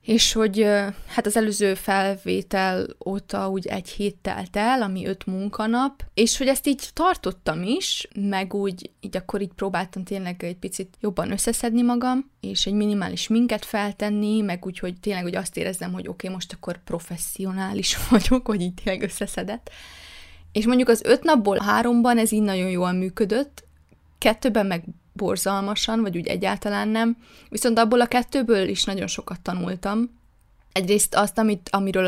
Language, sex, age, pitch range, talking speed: Hungarian, female, 20-39, 185-220 Hz, 155 wpm